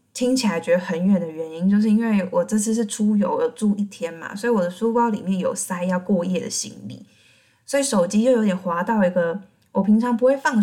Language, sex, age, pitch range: Chinese, female, 20-39, 180-230 Hz